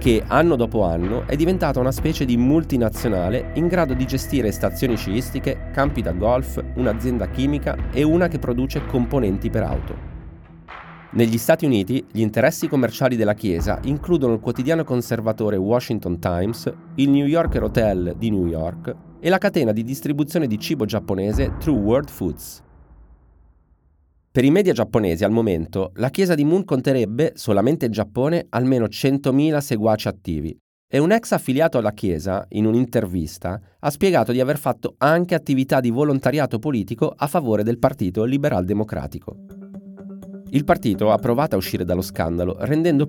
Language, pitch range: Italian, 100-145 Hz